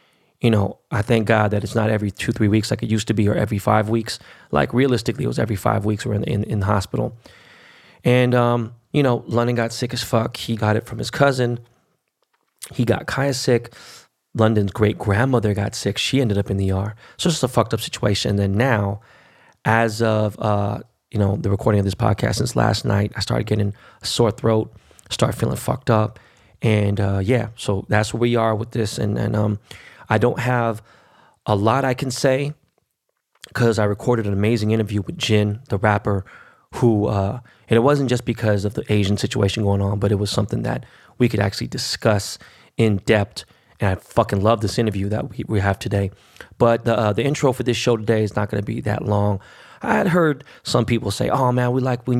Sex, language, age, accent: male, English, 20-39, American